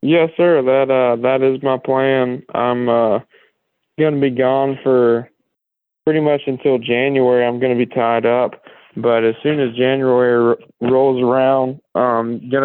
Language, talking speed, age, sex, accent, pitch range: English, 160 wpm, 20-39, male, American, 120-135 Hz